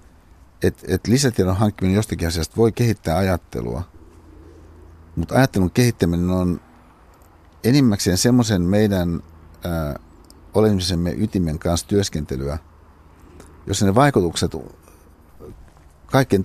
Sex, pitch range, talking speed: male, 80-100 Hz, 85 wpm